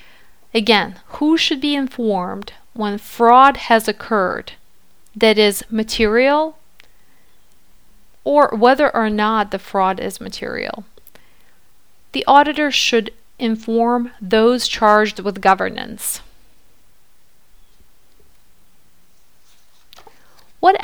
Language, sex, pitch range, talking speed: English, female, 205-235 Hz, 85 wpm